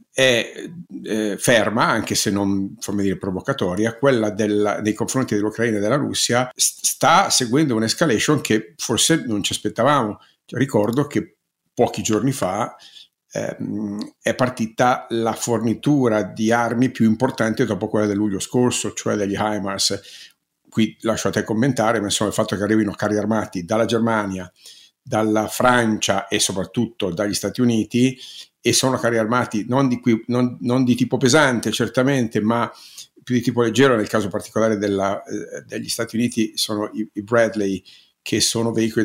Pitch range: 105-120 Hz